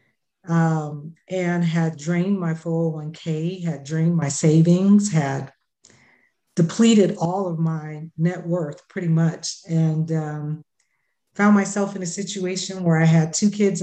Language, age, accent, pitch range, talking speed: English, 50-69, American, 160-180 Hz, 135 wpm